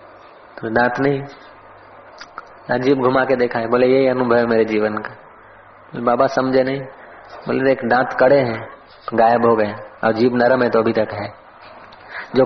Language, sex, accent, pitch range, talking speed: Hindi, male, native, 120-165 Hz, 165 wpm